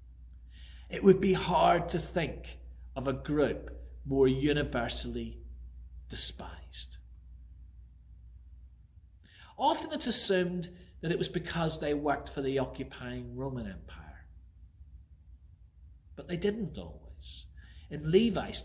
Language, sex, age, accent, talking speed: English, male, 40-59, British, 105 wpm